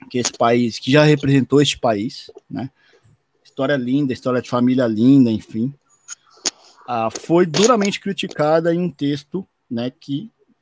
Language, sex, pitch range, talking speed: Portuguese, male, 135-170 Hz, 140 wpm